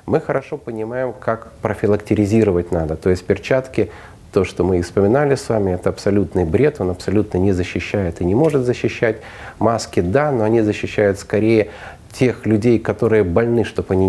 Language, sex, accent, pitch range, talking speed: Russian, male, native, 95-110 Hz, 160 wpm